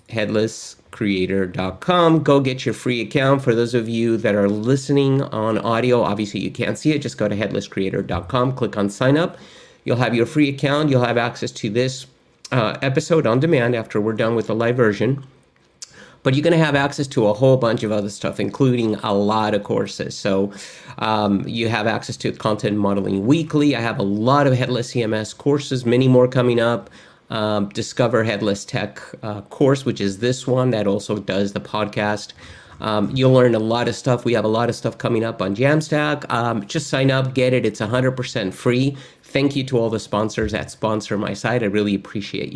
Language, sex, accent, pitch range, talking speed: English, male, American, 105-135 Hz, 200 wpm